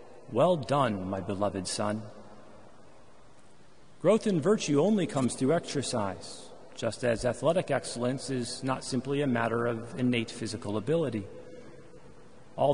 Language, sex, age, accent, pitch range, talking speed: English, male, 40-59, American, 115-165 Hz, 120 wpm